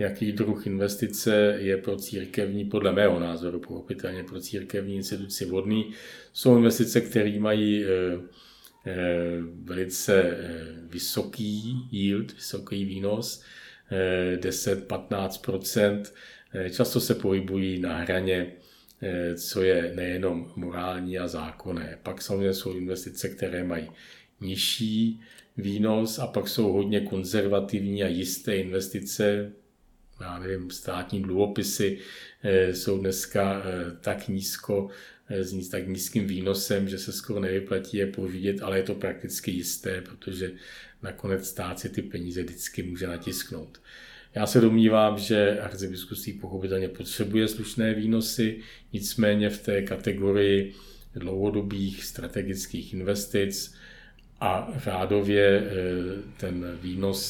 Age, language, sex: 50-69, Czech, male